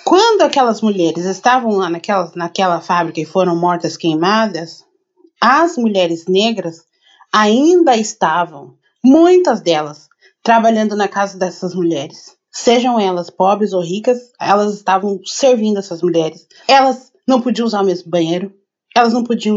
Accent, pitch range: Brazilian, 185-255 Hz